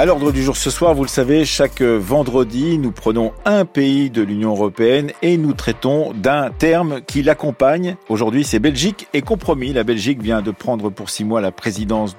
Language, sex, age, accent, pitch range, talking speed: French, male, 50-69, French, 110-145 Hz, 195 wpm